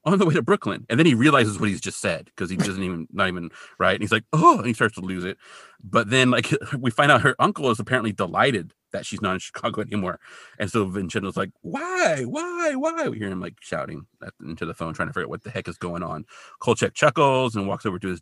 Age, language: 30-49, English